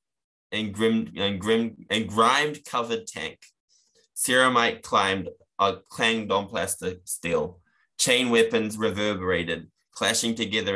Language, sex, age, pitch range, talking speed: English, male, 20-39, 95-115 Hz, 110 wpm